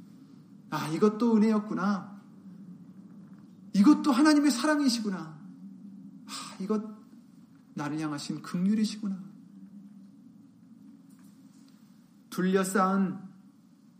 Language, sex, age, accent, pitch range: Korean, male, 40-59, native, 185-235 Hz